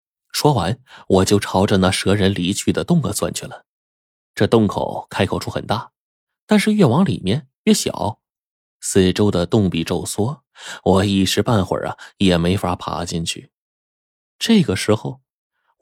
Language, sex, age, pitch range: Chinese, male, 20-39, 95-140 Hz